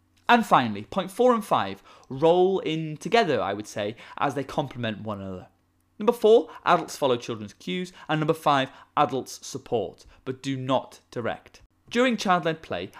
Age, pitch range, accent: 20-39, 115-175 Hz, British